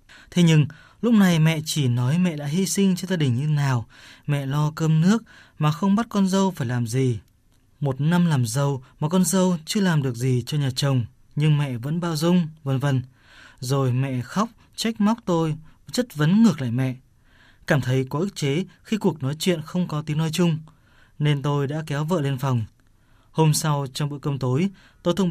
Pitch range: 130-170 Hz